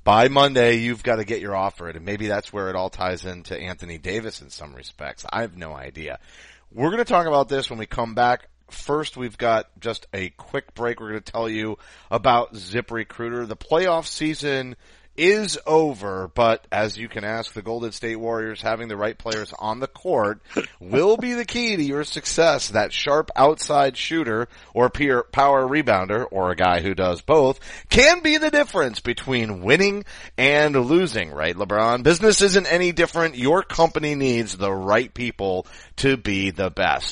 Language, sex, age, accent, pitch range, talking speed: English, male, 30-49, American, 100-140 Hz, 190 wpm